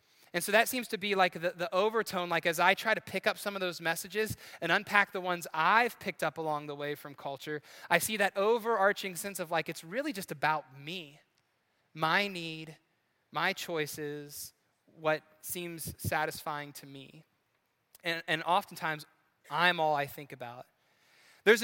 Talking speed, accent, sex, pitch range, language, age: 175 wpm, American, male, 160-205 Hz, English, 20-39